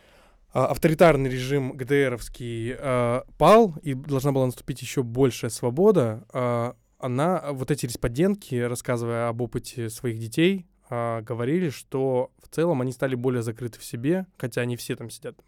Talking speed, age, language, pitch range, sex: 145 wpm, 20-39, Russian, 120-140 Hz, male